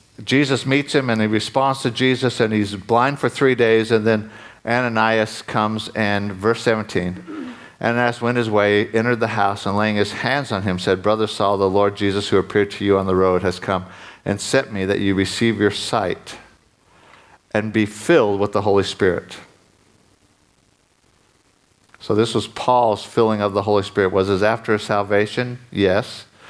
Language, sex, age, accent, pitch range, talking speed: English, male, 50-69, American, 100-115 Hz, 175 wpm